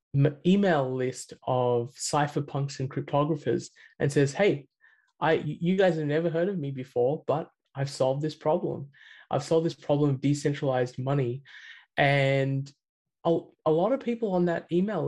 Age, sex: 20-39, male